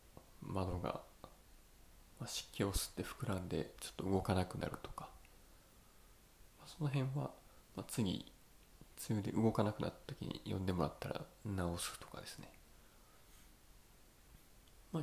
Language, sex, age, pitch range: Japanese, male, 20-39, 85-110 Hz